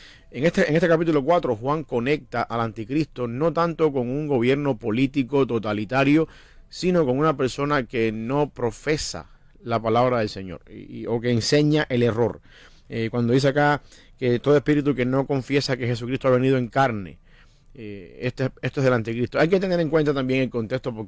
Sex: male